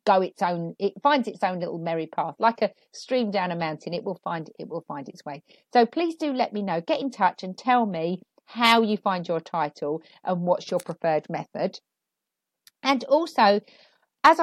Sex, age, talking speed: female, 40-59, 205 wpm